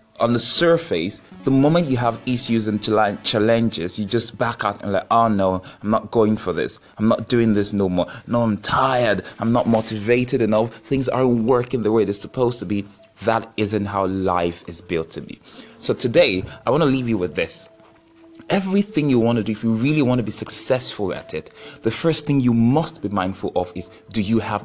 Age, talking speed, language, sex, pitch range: 20-39, 215 wpm, English, male, 100-120 Hz